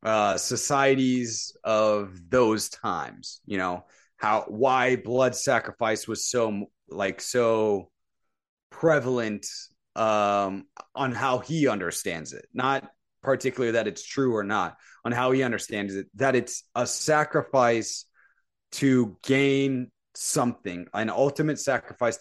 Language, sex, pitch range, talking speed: English, male, 110-135 Hz, 120 wpm